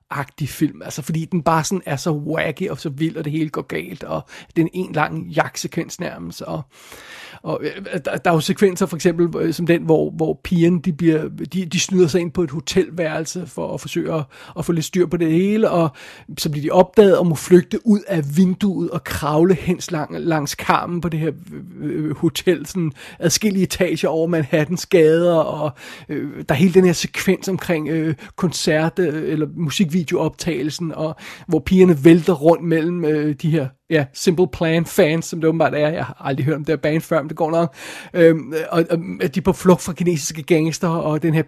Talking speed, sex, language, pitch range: 205 wpm, male, Danish, 155-180 Hz